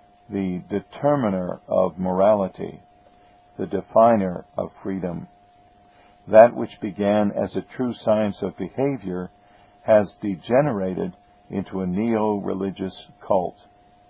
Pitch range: 100-105 Hz